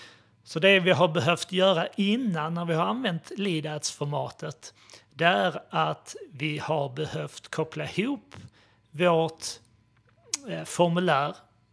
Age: 30-49